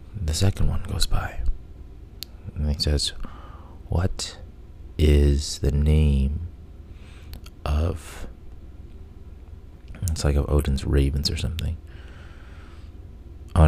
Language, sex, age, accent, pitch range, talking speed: English, male, 30-49, American, 75-85 Hz, 90 wpm